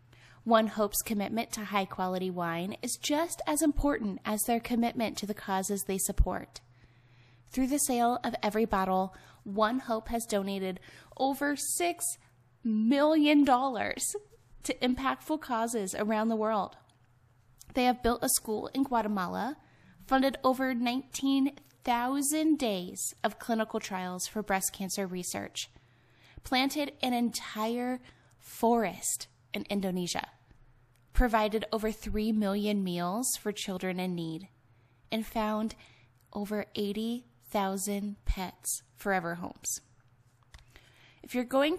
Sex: female